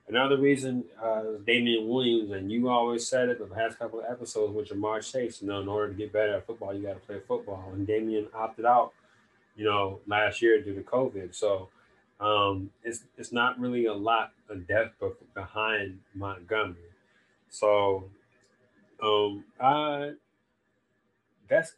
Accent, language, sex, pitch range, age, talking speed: American, English, male, 100-125 Hz, 20-39, 170 wpm